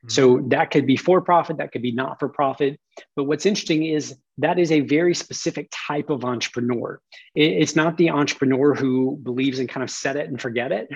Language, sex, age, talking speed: English, male, 30-49, 190 wpm